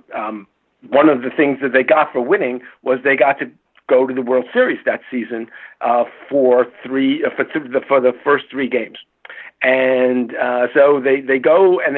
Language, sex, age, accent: English, male, 50-69, American